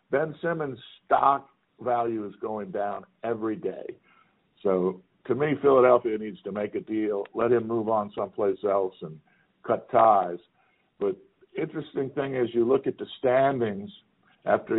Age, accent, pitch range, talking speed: 50-69, American, 110-140 Hz, 150 wpm